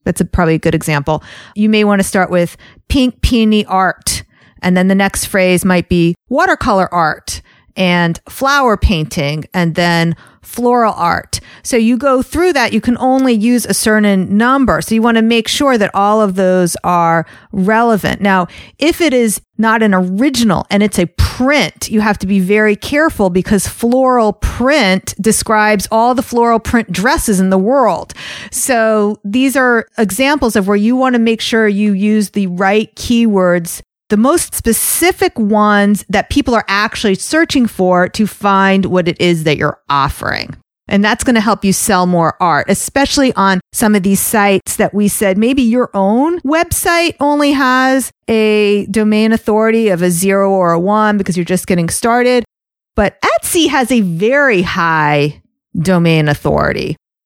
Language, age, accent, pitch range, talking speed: English, 40-59, American, 185-240 Hz, 170 wpm